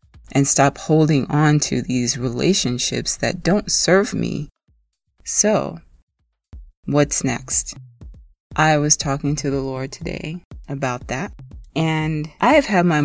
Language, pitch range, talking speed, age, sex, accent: English, 130-150 Hz, 125 wpm, 30-49, female, American